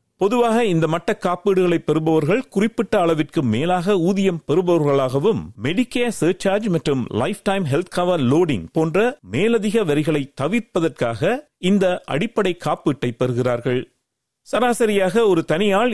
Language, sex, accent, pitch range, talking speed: Tamil, male, native, 145-200 Hz, 110 wpm